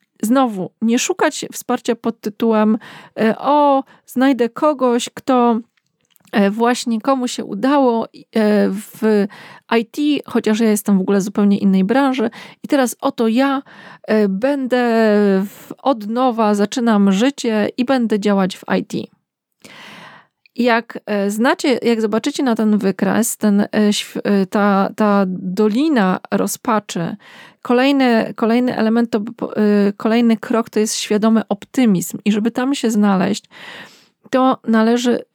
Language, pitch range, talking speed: Polish, 210-245 Hz, 110 wpm